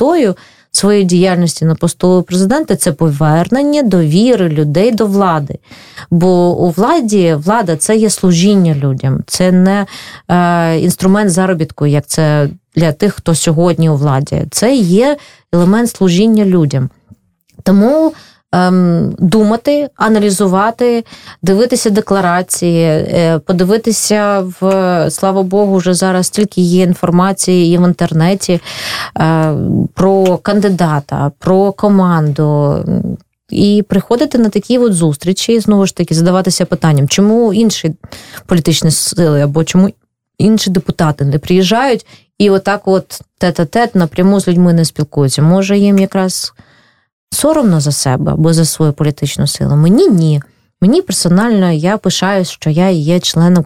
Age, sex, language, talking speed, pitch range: 20-39, female, Russian, 125 wpm, 160-200 Hz